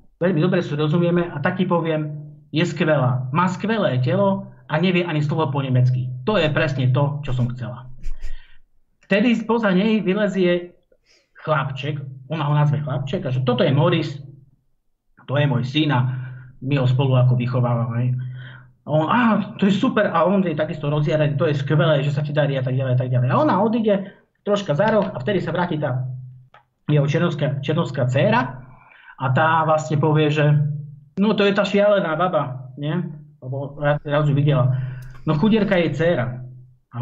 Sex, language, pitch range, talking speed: male, Slovak, 130-175 Hz, 175 wpm